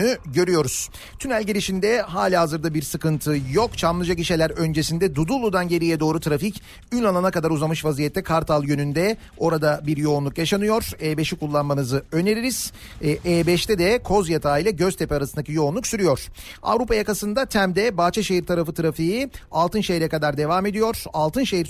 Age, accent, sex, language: 40-59, native, male, Turkish